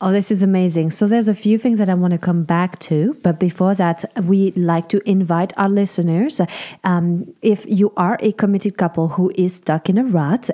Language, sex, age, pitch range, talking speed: English, female, 30-49, 175-235 Hz, 215 wpm